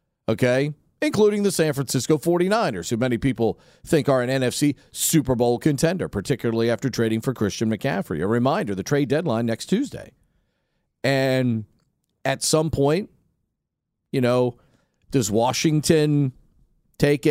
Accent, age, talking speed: American, 40-59, 130 wpm